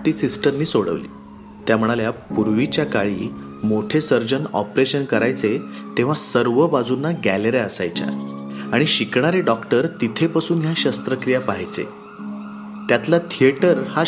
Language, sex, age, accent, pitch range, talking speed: Marathi, male, 30-49, native, 115-160 Hz, 110 wpm